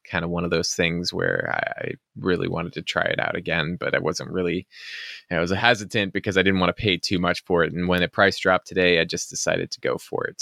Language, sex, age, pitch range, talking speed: English, male, 20-39, 90-100 Hz, 260 wpm